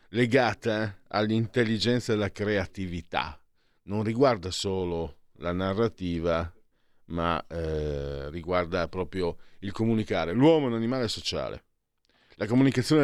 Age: 40-59